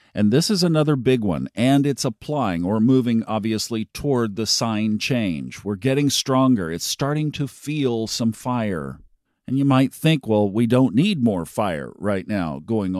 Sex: male